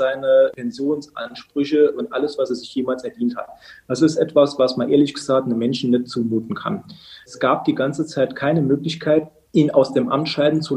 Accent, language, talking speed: German, German, 195 wpm